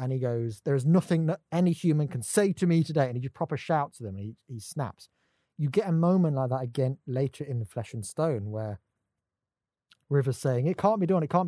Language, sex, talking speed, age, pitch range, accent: English, male, 245 wpm, 20-39, 105-150 Hz, British